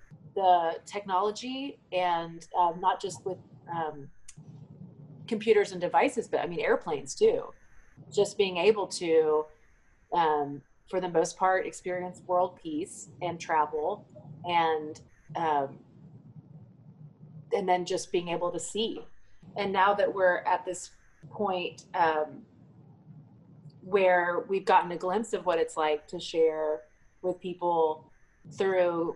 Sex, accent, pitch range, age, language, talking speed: female, American, 155-190 Hz, 30-49, English, 125 wpm